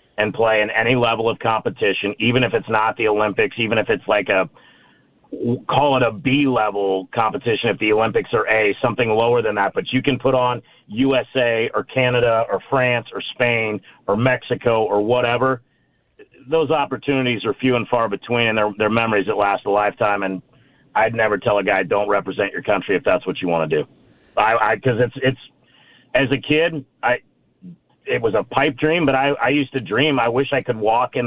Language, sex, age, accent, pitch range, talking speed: English, male, 40-59, American, 120-135 Hz, 205 wpm